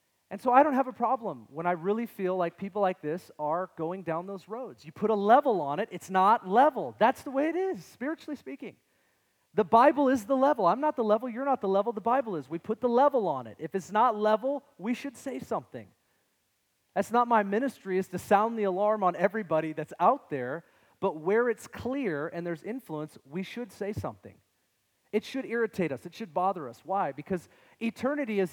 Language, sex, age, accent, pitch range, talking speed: English, male, 40-59, American, 175-235 Hz, 215 wpm